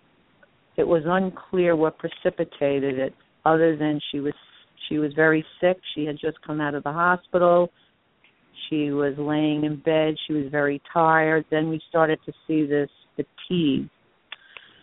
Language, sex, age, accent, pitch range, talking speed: English, female, 50-69, American, 145-165 Hz, 155 wpm